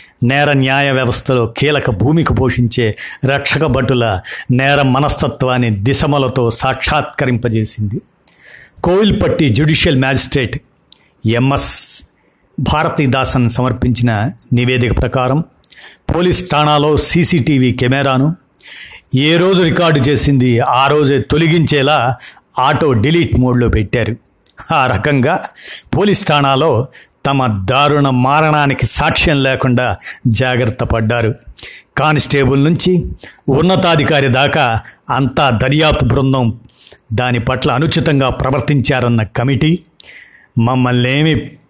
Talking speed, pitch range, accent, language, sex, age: 80 wpm, 125-150 Hz, native, Telugu, male, 50-69